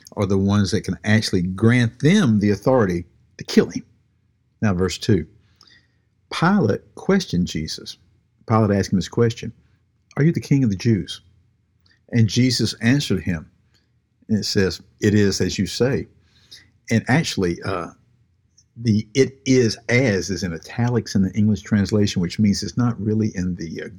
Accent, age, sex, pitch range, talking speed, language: American, 50-69, male, 100-120 Hz, 165 wpm, English